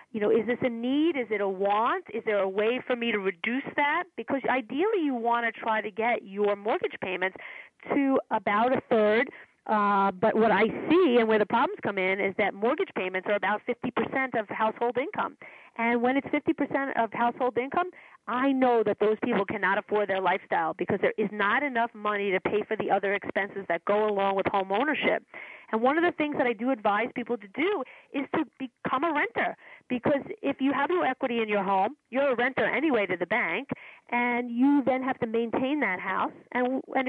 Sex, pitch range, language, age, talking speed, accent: female, 205-265 Hz, English, 40-59, 210 wpm, American